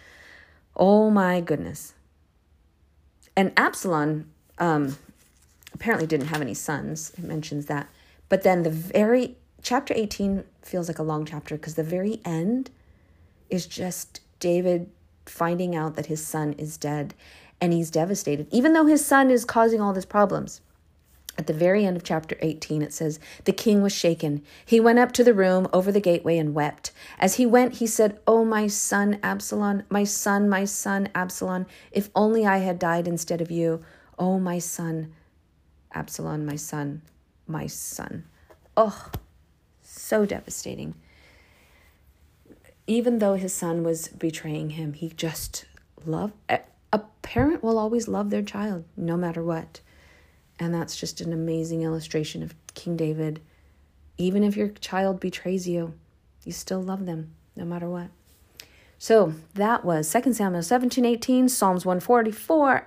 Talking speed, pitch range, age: 150 wpm, 150-205 Hz, 40-59